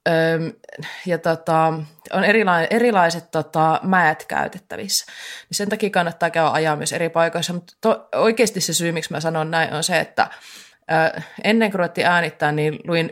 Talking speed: 150 wpm